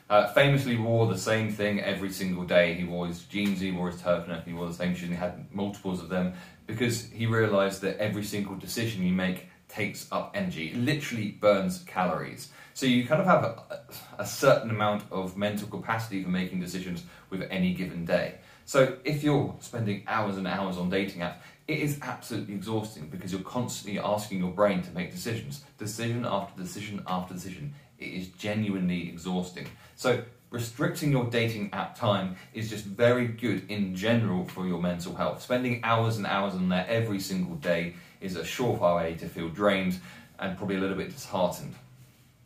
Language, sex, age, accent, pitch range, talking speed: English, male, 30-49, British, 90-120 Hz, 190 wpm